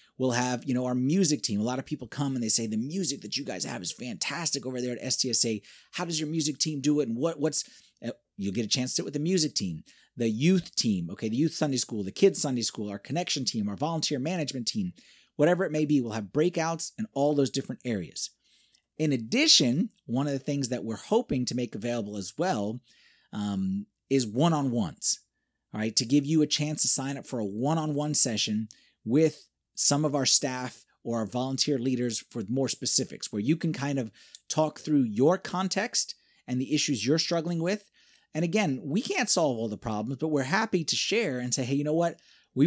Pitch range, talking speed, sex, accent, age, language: 115-160 Hz, 220 wpm, male, American, 30-49, English